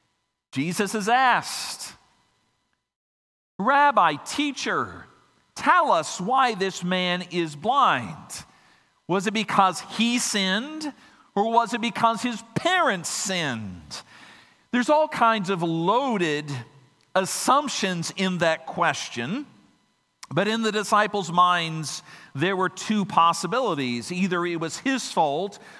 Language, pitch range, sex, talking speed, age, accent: English, 165-220 Hz, male, 110 wpm, 50-69, American